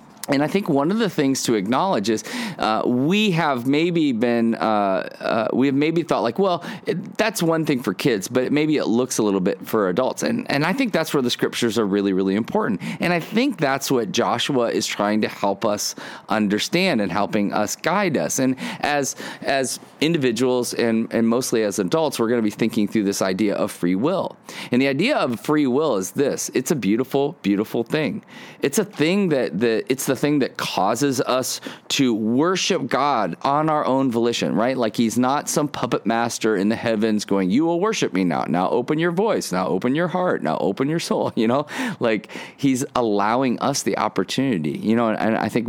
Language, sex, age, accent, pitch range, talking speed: English, male, 30-49, American, 105-150 Hz, 210 wpm